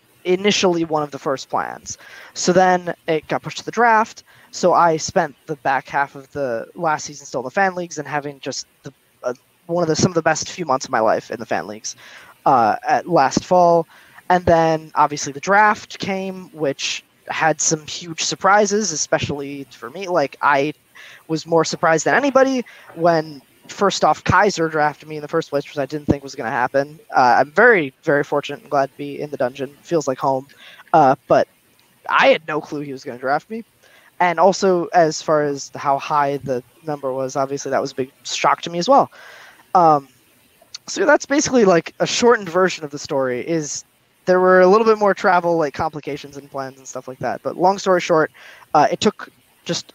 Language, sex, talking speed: English, male, 210 wpm